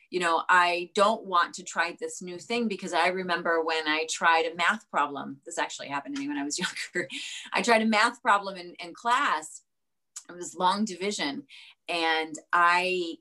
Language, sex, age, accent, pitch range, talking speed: English, female, 30-49, American, 165-220 Hz, 190 wpm